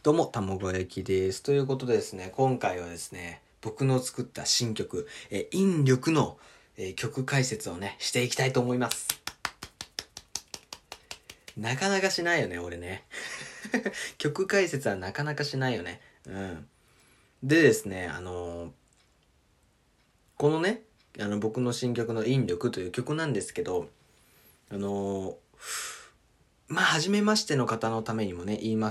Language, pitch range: Japanese, 100-145 Hz